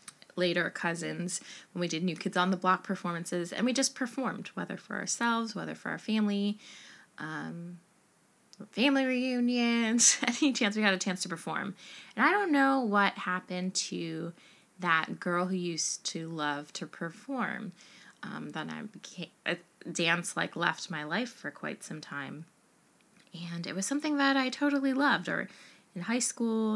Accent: American